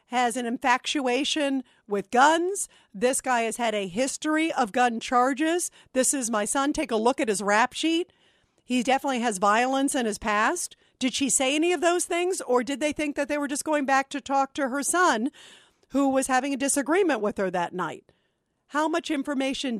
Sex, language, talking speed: female, English, 200 wpm